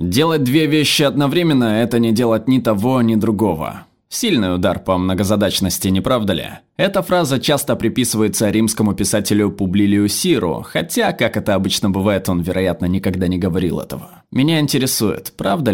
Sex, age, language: male, 20-39, Russian